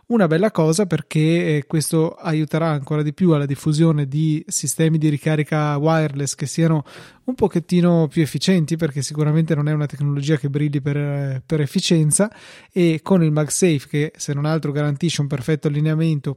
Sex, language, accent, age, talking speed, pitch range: male, Italian, native, 20-39, 165 wpm, 150-175 Hz